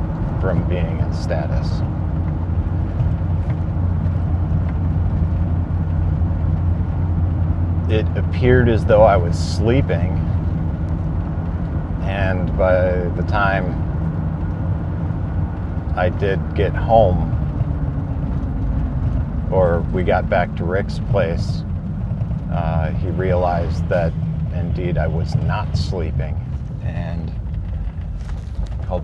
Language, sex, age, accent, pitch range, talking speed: English, male, 40-59, American, 80-90 Hz, 75 wpm